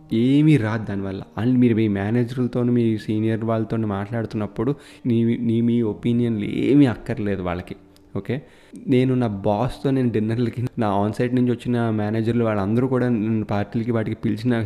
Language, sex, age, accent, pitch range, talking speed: Telugu, male, 20-39, native, 105-125 Hz, 145 wpm